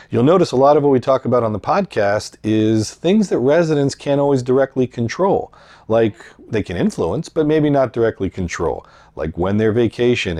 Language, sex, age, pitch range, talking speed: English, male, 40-59, 95-135 Hz, 190 wpm